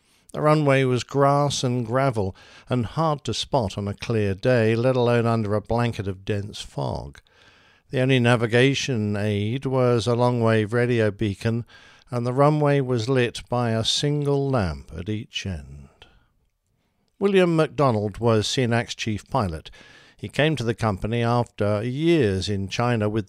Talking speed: 150 wpm